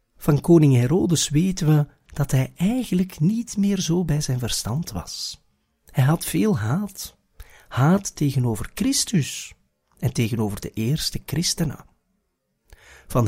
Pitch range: 115-180 Hz